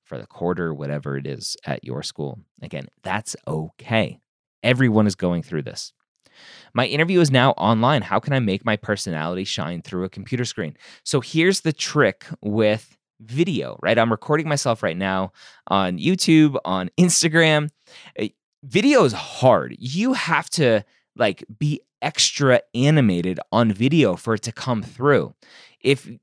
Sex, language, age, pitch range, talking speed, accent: male, English, 20-39, 100-145 Hz, 155 wpm, American